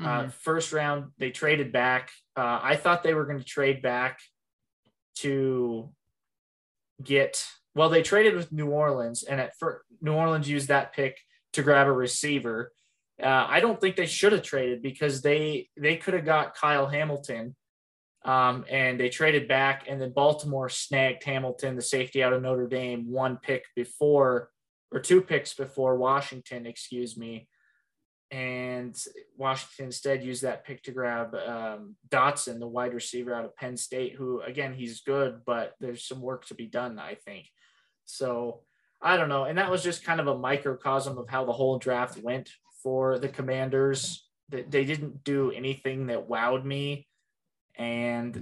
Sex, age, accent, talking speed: male, 20-39, American, 170 wpm